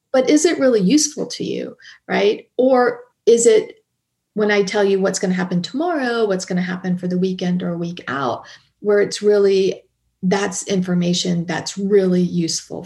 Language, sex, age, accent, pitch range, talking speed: English, female, 40-59, American, 180-230 Hz, 180 wpm